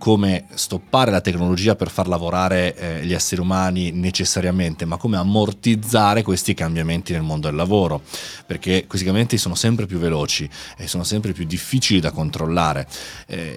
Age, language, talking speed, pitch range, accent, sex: 30-49, Italian, 160 wpm, 85-110 Hz, native, male